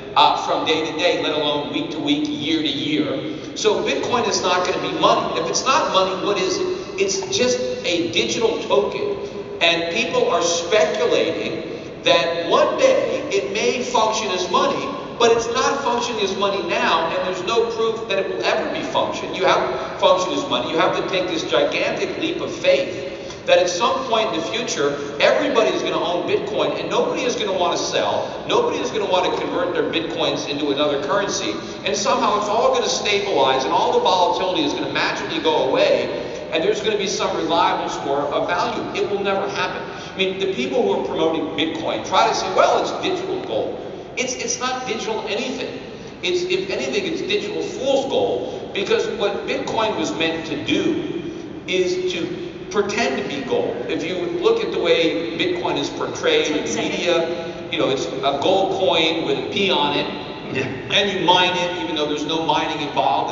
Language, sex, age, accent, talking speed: English, male, 50-69, American, 205 wpm